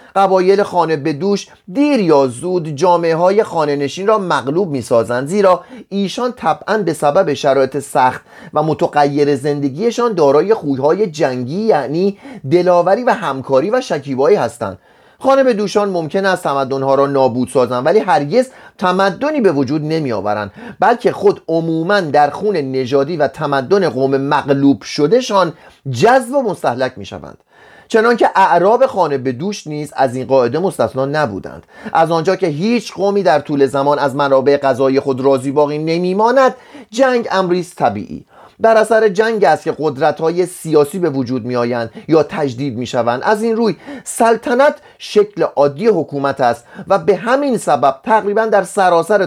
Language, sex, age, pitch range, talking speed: Persian, male, 30-49, 140-210 Hz, 150 wpm